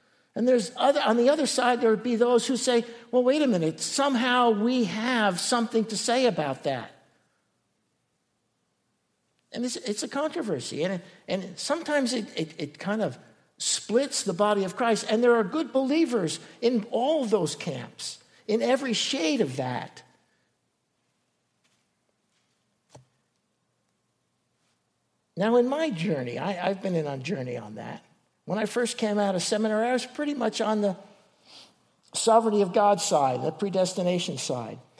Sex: male